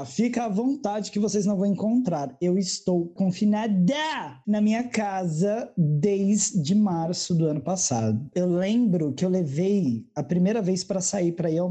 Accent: Brazilian